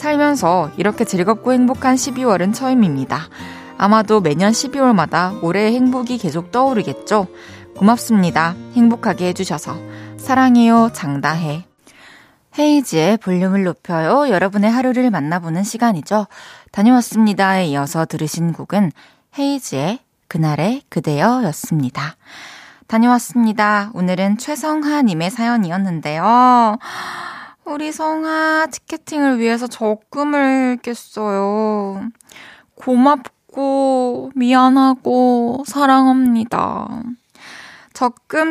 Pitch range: 200-275 Hz